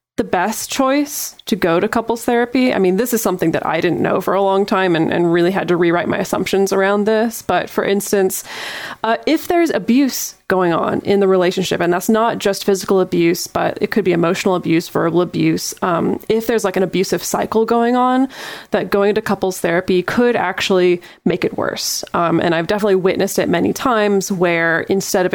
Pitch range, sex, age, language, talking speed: 180-210 Hz, female, 20-39, English, 205 wpm